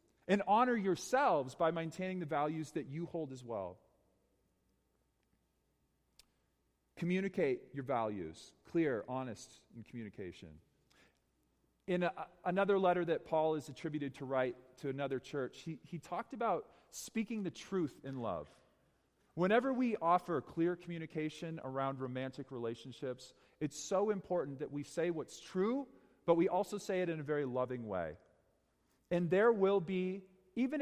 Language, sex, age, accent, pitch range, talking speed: English, male, 40-59, American, 130-190 Hz, 140 wpm